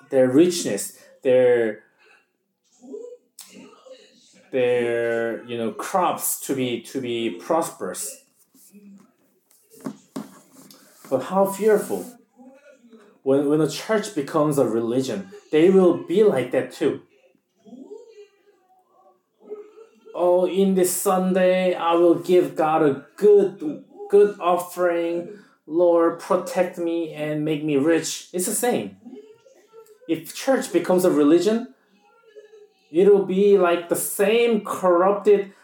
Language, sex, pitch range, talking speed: English, male, 150-230 Hz, 105 wpm